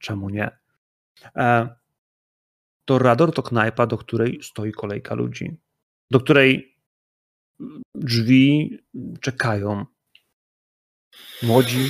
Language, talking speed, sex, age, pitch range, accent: Polish, 75 wpm, male, 30-49, 115-145 Hz, native